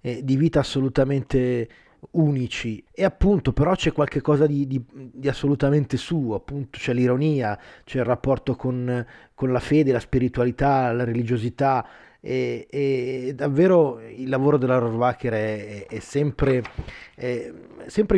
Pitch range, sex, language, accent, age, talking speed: 120-140 Hz, male, Italian, native, 30-49, 135 wpm